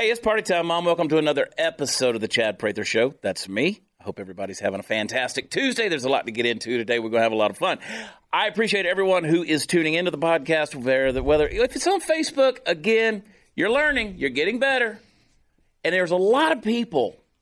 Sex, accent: male, American